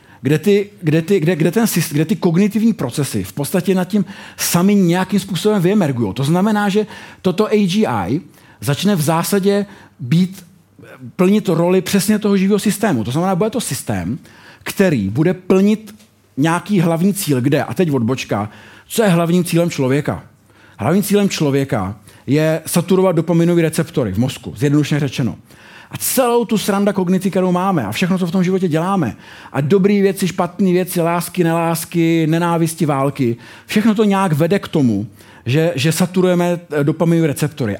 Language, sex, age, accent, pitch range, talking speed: Czech, male, 50-69, native, 135-190 Hz, 160 wpm